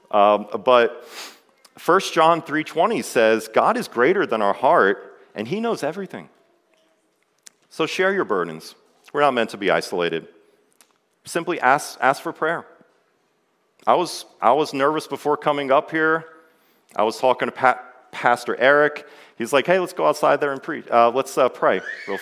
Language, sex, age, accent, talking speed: English, male, 40-59, American, 165 wpm